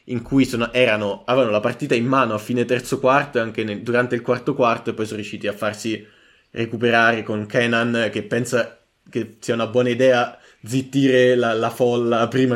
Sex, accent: male, native